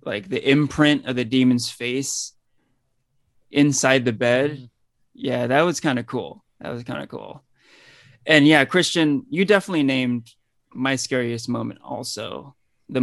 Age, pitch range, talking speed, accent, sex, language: 20-39, 125-145 Hz, 145 wpm, American, male, English